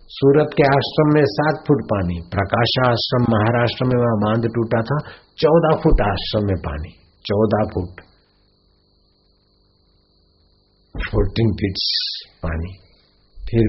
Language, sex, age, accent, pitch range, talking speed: Hindi, male, 60-79, native, 110-160 Hz, 115 wpm